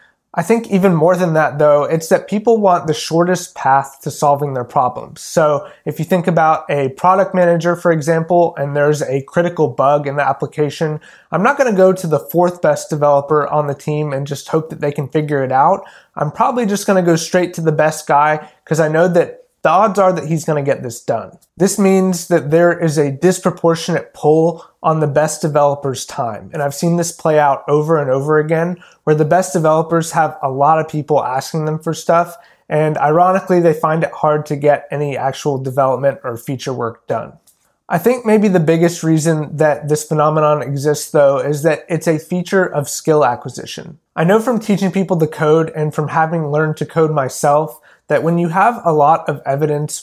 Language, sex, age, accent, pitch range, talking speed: English, male, 20-39, American, 145-170 Hz, 205 wpm